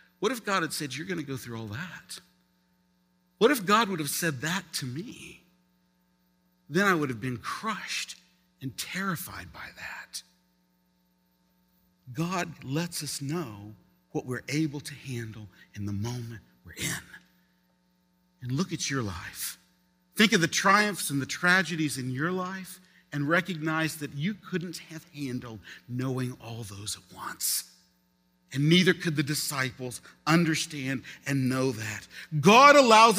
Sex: male